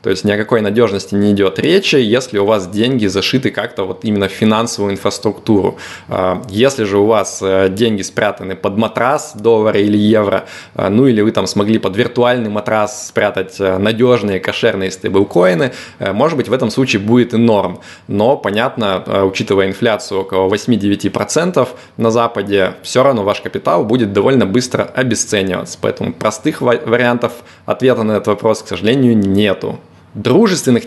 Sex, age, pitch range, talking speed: male, 20-39, 100-120 Hz, 150 wpm